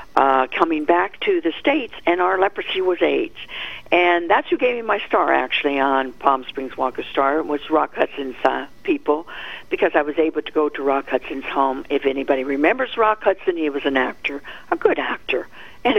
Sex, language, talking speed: female, English, 195 wpm